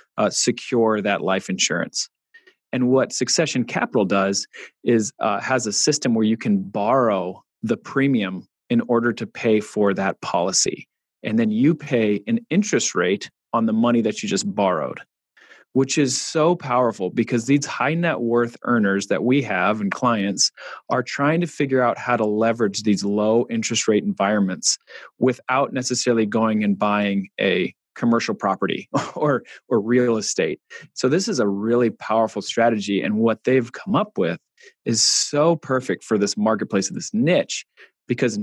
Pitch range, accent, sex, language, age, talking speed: 105-140 Hz, American, male, English, 30-49, 165 wpm